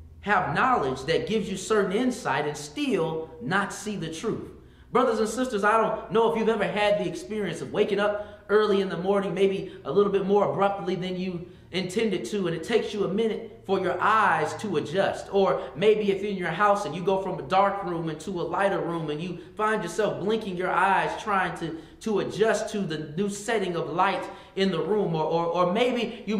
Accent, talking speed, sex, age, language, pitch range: American, 220 wpm, male, 20-39, English, 185-220 Hz